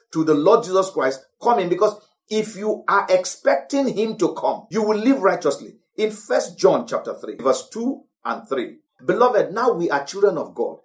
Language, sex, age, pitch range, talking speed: English, male, 50-69, 180-265 Hz, 190 wpm